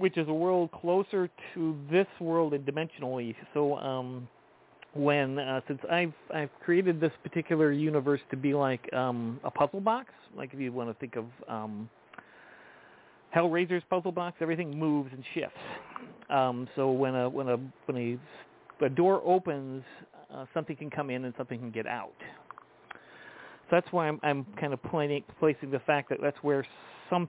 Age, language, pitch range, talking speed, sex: 40-59, English, 125-165 Hz, 170 wpm, male